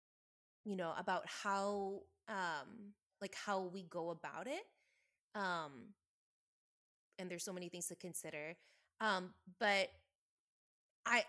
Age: 20-39